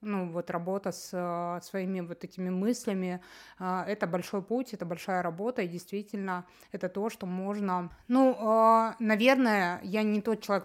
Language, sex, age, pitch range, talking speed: Russian, female, 20-39, 180-205 Hz, 165 wpm